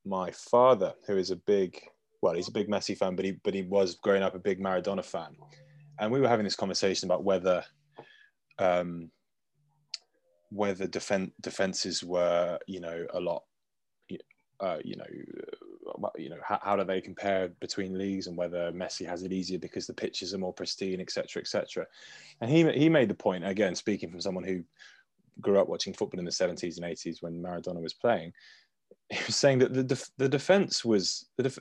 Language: English